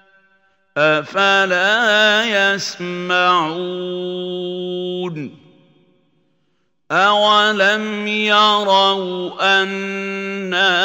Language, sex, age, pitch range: Arabic, male, 50-69, 175-195 Hz